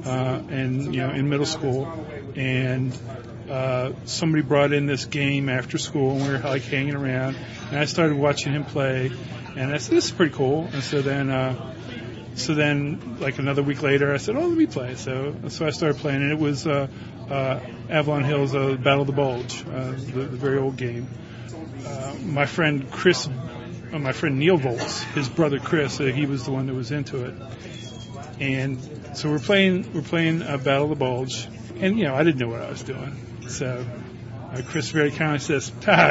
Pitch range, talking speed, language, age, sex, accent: 130-150 Hz, 210 wpm, English, 40-59, male, American